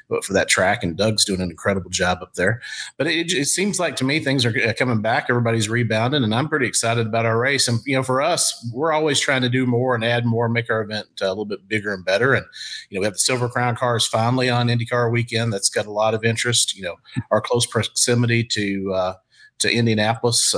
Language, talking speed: English, 240 wpm